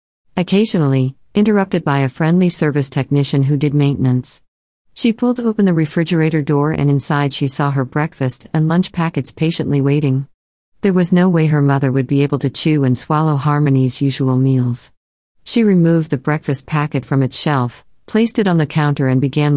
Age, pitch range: 50-69, 130-160 Hz